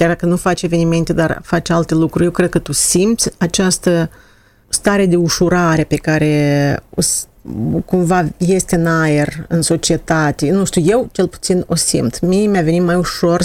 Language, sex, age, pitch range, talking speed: Romanian, female, 40-59, 150-205 Hz, 170 wpm